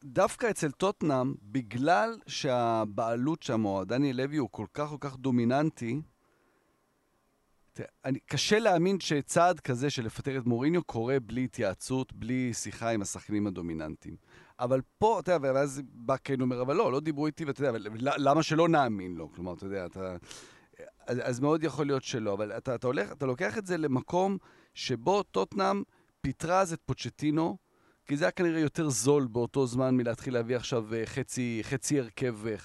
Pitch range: 120-155 Hz